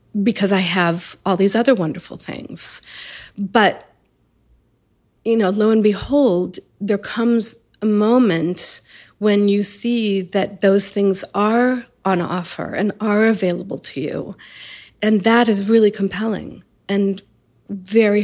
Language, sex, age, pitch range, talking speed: English, female, 40-59, 180-210 Hz, 130 wpm